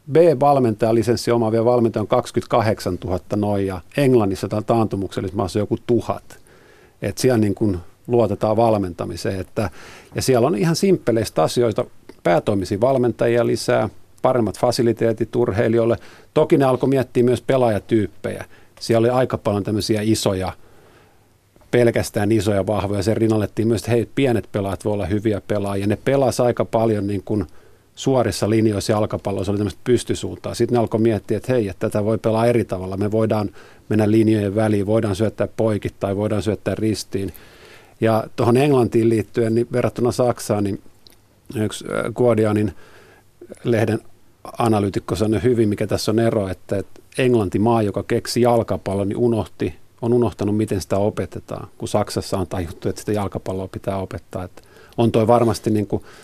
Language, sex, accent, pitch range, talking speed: Finnish, male, native, 100-120 Hz, 150 wpm